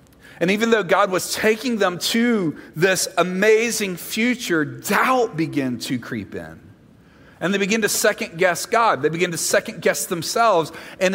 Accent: American